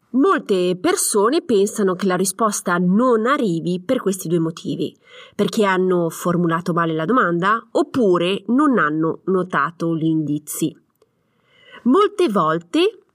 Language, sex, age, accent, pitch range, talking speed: Italian, female, 30-49, native, 180-270 Hz, 120 wpm